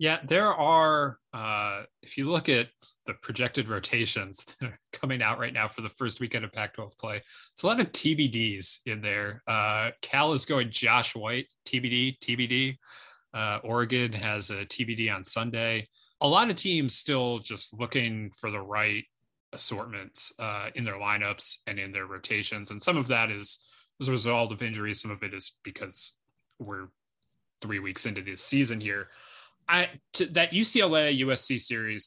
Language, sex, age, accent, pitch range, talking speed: English, male, 20-39, American, 105-125 Hz, 170 wpm